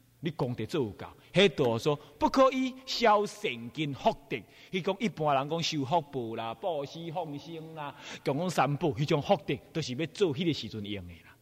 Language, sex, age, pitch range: Chinese, male, 30-49, 125-190 Hz